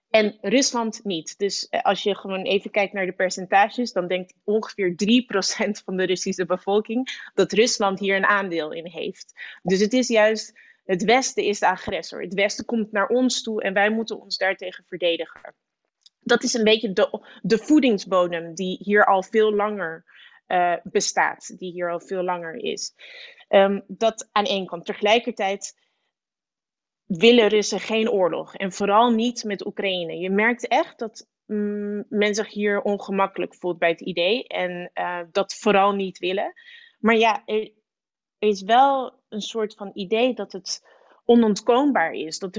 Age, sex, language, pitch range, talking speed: 20-39, female, Dutch, 190-225 Hz, 160 wpm